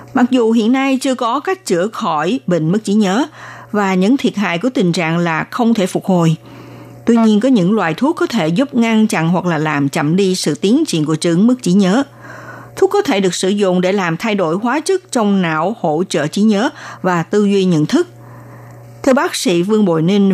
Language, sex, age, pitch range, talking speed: Vietnamese, female, 60-79, 170-235 Hz, 230 wpm